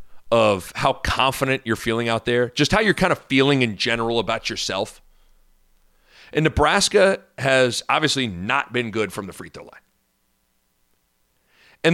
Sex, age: male, 40-59